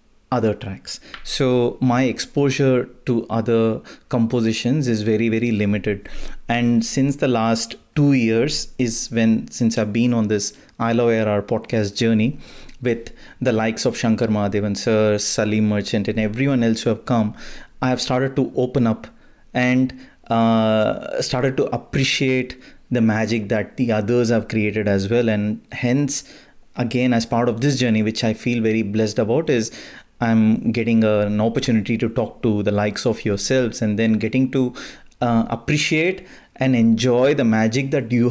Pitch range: 110-130 Hz